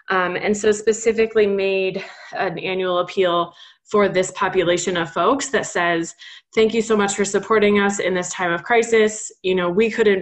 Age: 20-39